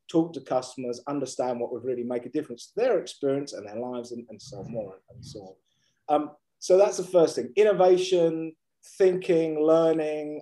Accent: British